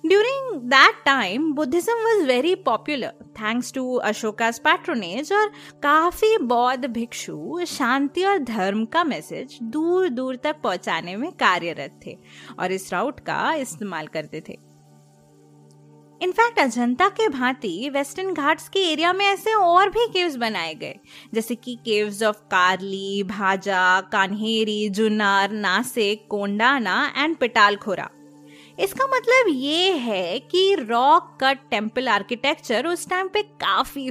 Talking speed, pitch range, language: 115 wpm, 205-320 Hz, Hindi